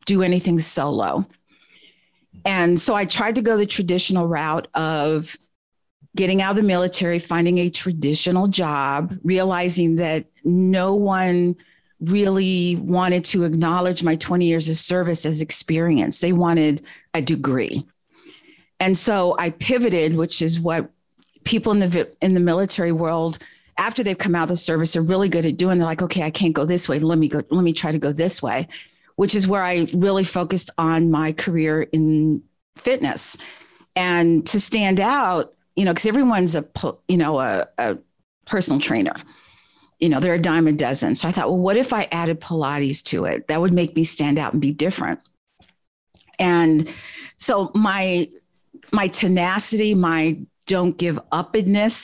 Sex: female